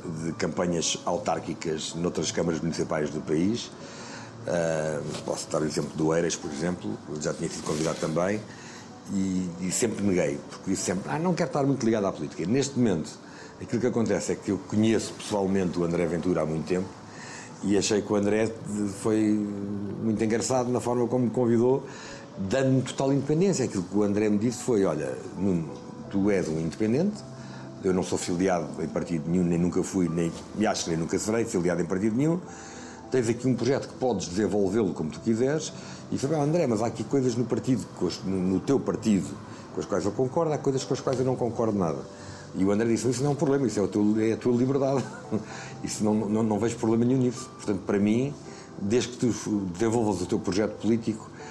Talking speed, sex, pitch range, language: 205 wpm, male, 90-125 Hz, Portuguese